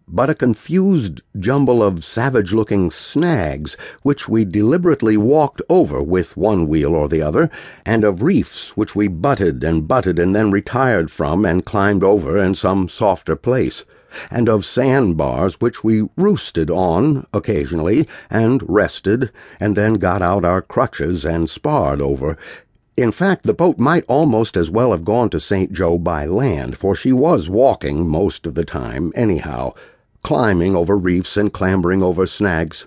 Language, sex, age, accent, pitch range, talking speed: English, male, 60-79, American, 90-110 Hz, 160 wpm